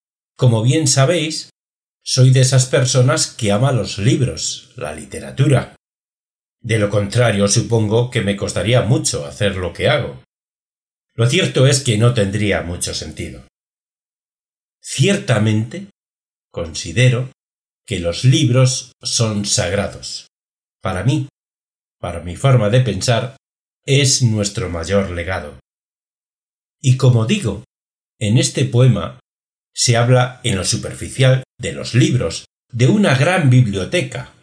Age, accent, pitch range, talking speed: 60-79, Spanish, 105-130 Hz, 120 wpm